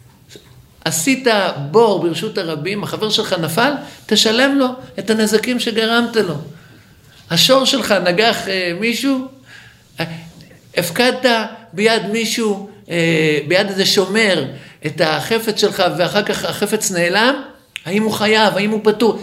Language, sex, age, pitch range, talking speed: Hebrew, male, 50-69, 195-260 Hz, 110 wpm